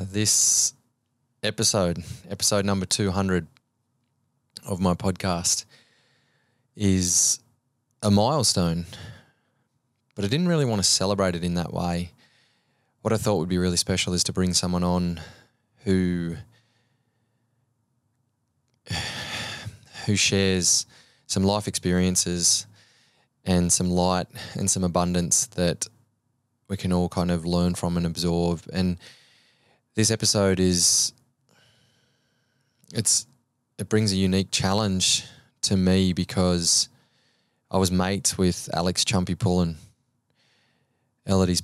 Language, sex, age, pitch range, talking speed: English, male, 20-39, 90-120 Hz, 110 wpm